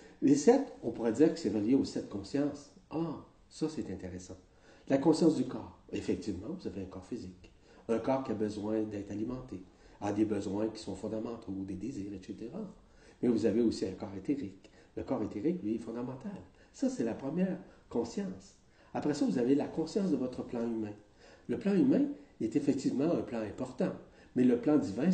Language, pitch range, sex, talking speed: French, 105-160 Hz, male, 195 wpm